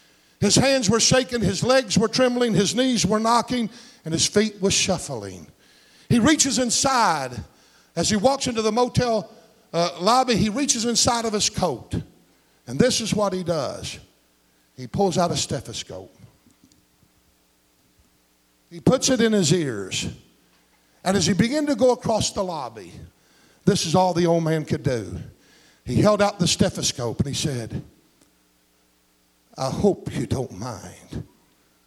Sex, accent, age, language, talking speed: male, American, 50-69, English, 155 wpm